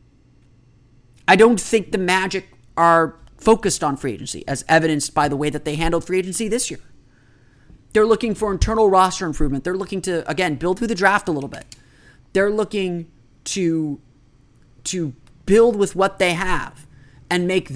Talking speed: 170 wpm